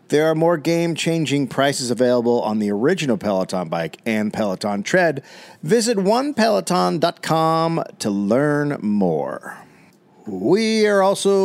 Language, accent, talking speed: English, American, 115 wpm